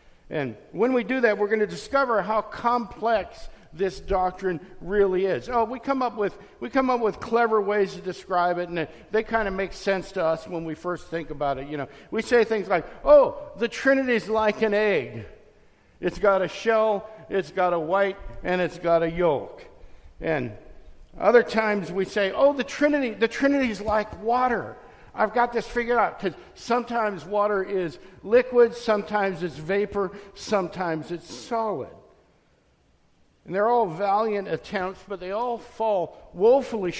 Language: English